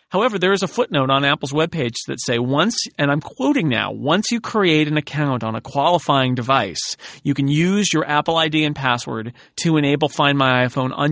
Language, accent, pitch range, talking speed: English, American, 130-160 Hz, 205 wpm